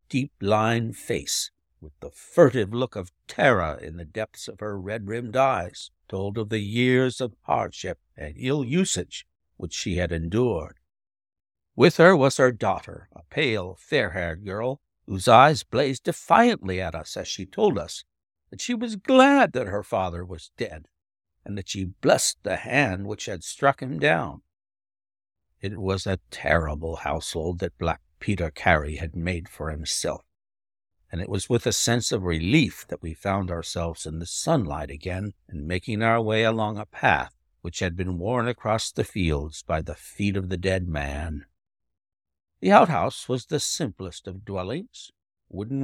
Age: 60-79